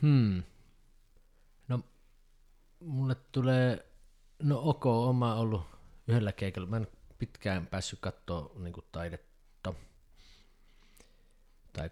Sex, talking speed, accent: male, 100 wpm, native